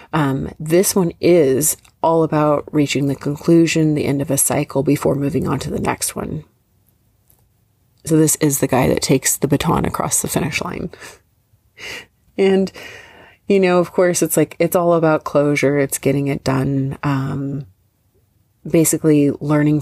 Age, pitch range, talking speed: 30-49, 135-165 Hz, 155 wpm